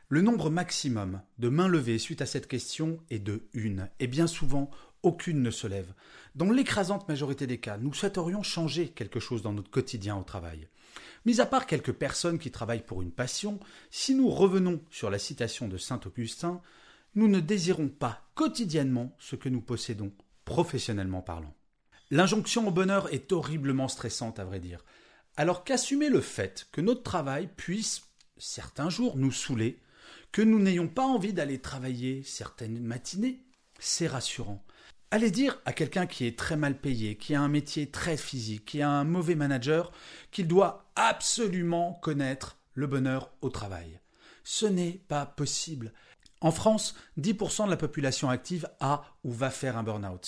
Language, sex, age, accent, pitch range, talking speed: French, male, 30-49, French, 115-180 Hz, 170 wpm